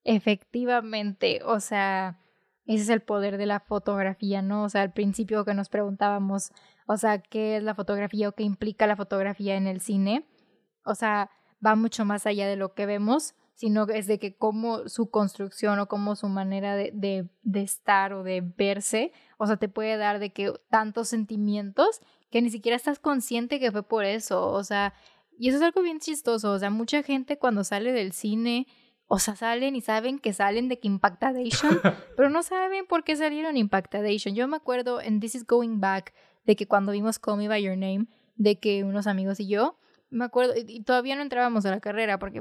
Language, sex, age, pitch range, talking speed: Spanish, female, 10-29, 205-235 Hz, 205 wpm